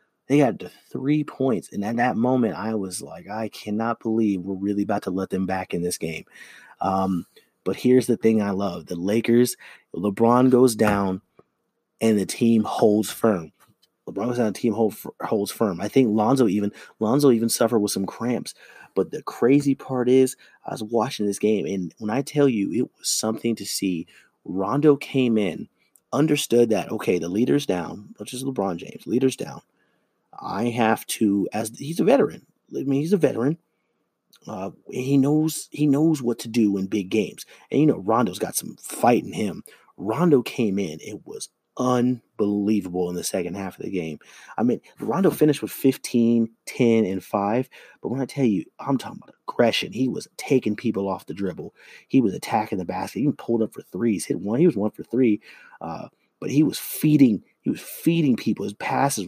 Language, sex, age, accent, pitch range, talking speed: English, male, 30-49, American, 100-125 Hz, 195 wpm